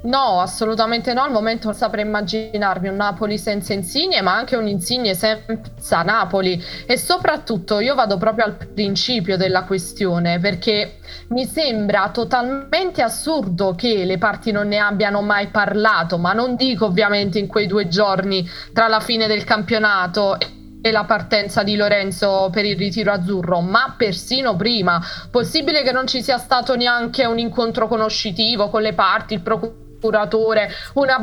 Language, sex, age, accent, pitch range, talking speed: Italian, female, 20-39, native, 205-245 Hz, 155 wpm